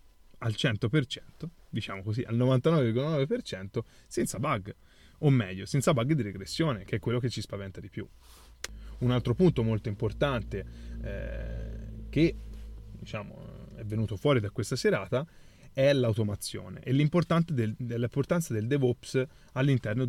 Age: 20-39